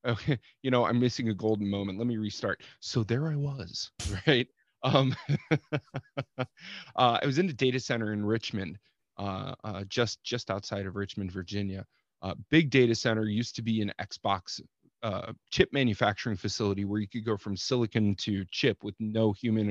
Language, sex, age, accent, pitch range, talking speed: English, male, 30-49, American, 100-125 Hz, 175 wpm